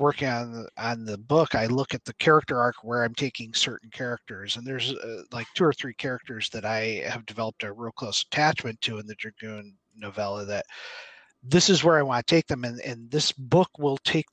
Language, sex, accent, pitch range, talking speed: English, male, American, 120-155 Hz, 220 wpm